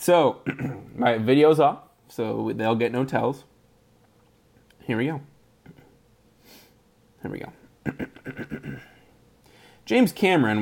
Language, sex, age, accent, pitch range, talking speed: English, male, 20-39, American, 115-160 Hz, 95 wpm